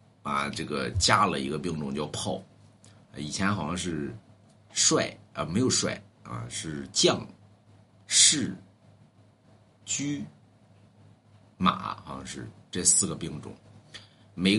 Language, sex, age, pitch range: Chinese, male, 50-69, 100-130 Hz